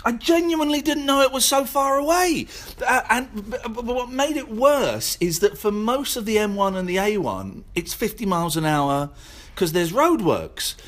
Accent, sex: British, male